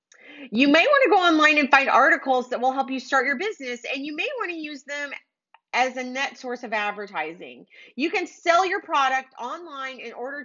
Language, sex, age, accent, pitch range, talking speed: English, female, 30-49, American, 235-315 Hz, 215 wpm